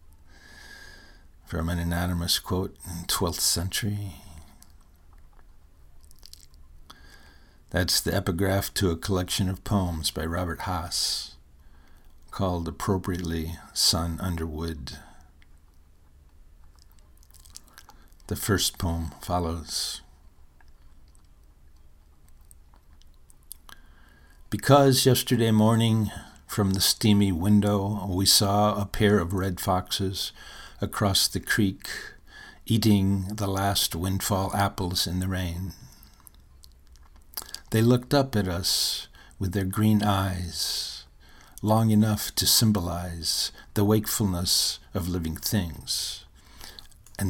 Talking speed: 90 wpm